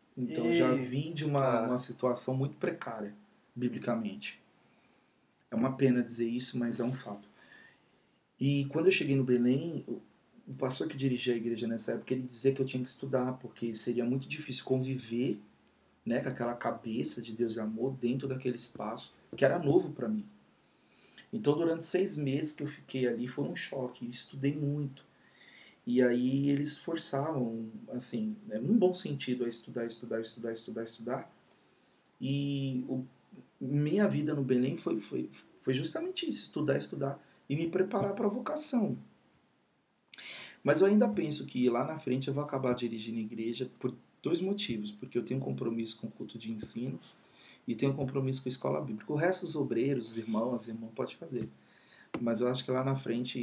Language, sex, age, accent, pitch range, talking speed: Portuguese, male, 40-59, Brazilian, 120-145 Hz, 180 wpm